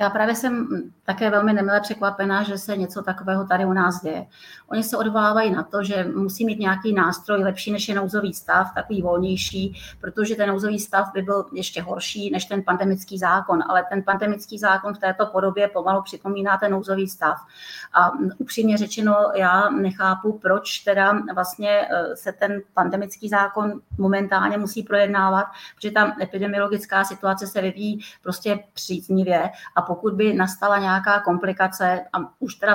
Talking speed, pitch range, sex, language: 160 wpm, 185-210 Hz, female, Czech